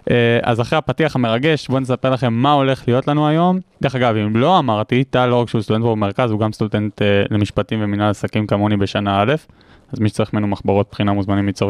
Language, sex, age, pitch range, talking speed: Hebrew, male, 20-39, 115-140 Hz, 210 wpm